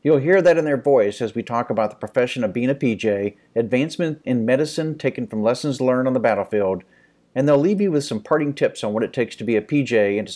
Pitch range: 115-145 Hz